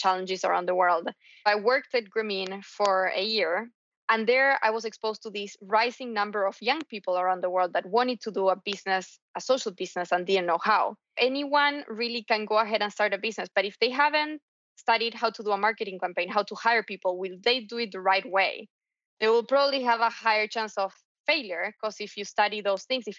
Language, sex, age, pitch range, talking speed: English, female, 20-39, 195-235 Hz, 225 wpm